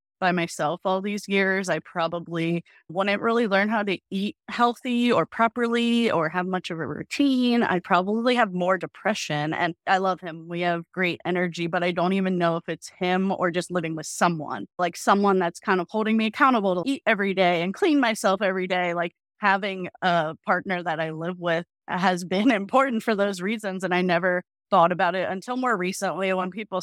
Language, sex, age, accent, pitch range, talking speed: English, female, 20-39, American, 170-205 Hz, 200 wpm